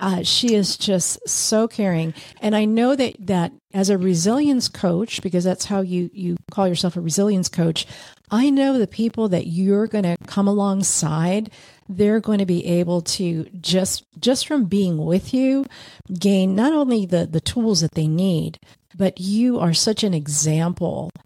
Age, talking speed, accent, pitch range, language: 50-69, 175 wpm, American, 170-220 Hz, English